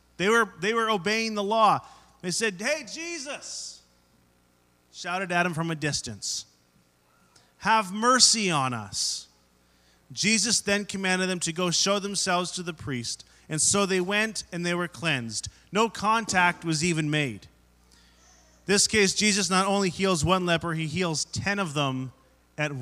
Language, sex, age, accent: English, male, 30-49, American